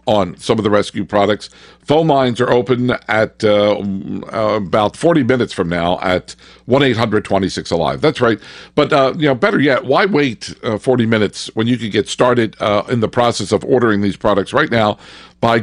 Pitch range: 105-140 Hz